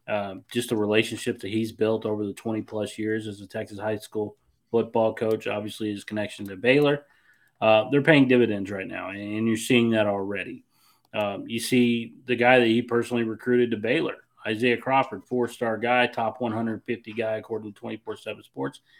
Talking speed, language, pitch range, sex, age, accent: 185 wpm, English, 105-125 Hz, male, 30-49, American